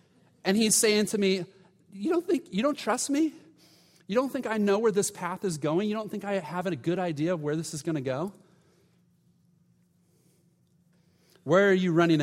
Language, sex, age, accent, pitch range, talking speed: English, male, 30-49, American, 145-180 Hz, 200 wpm